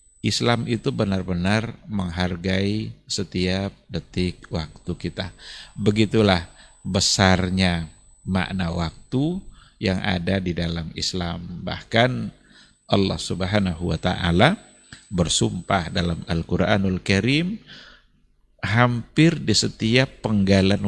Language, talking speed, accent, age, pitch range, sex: Indonesian, 85 wpm, native, 50-69, 90-115 Hz, male